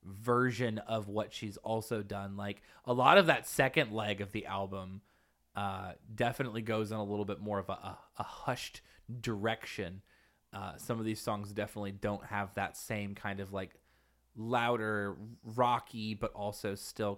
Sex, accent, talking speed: male, American, 165 wpm